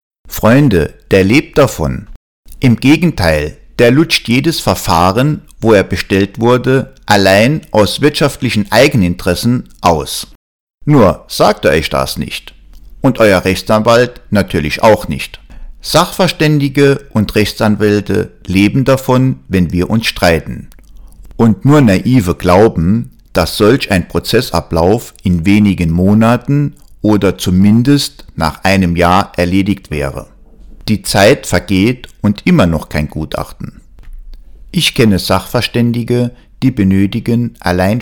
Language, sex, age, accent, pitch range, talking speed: German, male, 50-69, German, 90-120 Hz, 115 wpm